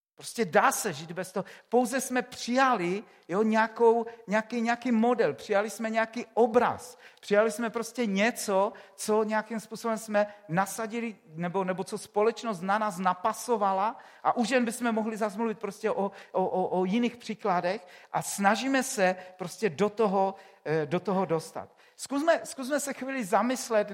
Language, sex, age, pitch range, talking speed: Czech, male, 50-69, 185-235 Hz, 150 wpm